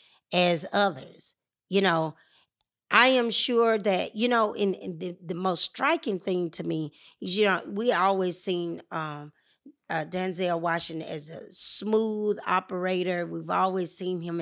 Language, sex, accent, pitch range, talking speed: English, female, American, 180-270 Hz, 155 wpm